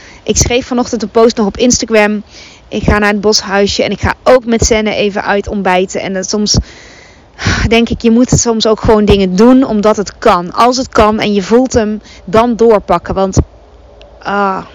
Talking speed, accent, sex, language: 190 wpm, Dutch, female, Dutch